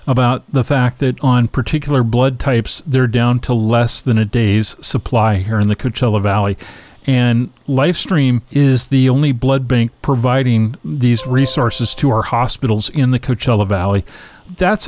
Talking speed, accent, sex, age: 155 wpm, American, male, 40-59